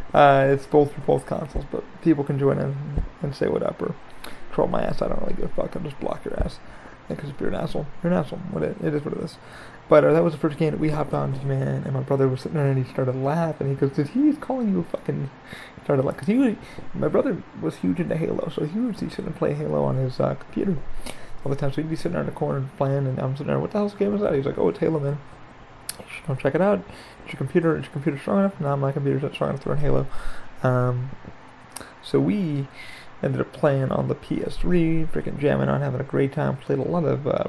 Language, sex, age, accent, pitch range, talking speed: English, male, 30-49, American, 130-160 Hz, 280 wpm